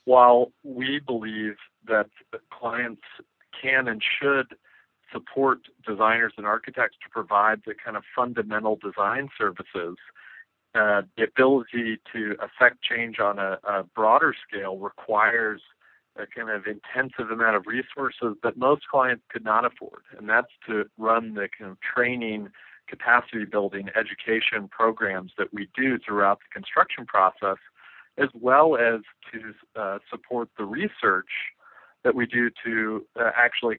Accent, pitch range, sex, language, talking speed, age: American, 110-125 Hz, male, English, 140 wpm, 50-69